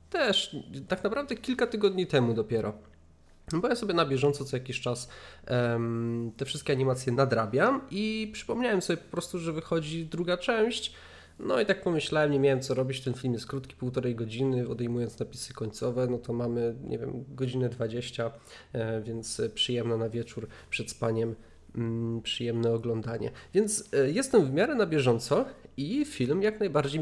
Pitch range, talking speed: 115-145 Hz, 165 wpm